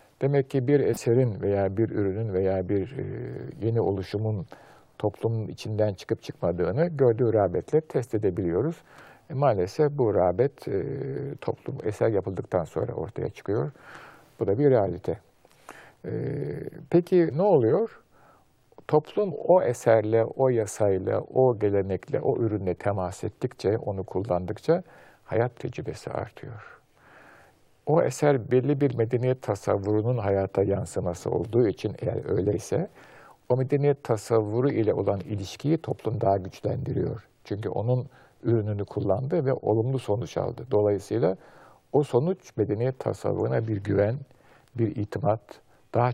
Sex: male